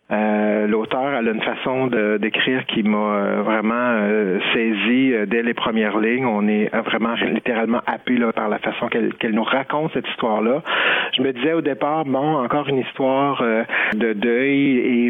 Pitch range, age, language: 115-140 Hz, 40-59, French